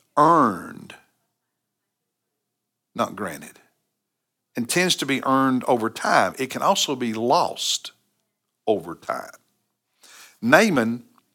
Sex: male